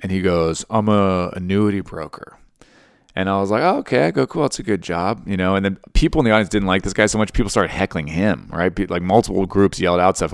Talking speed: 260 wpm